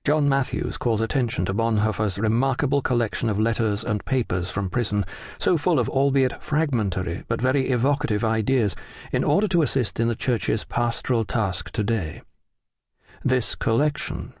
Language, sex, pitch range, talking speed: English, male, 105-130 Hz, 145 wpm